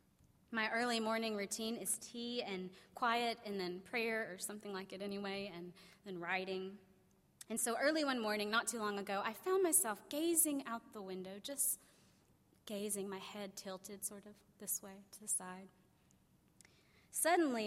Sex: female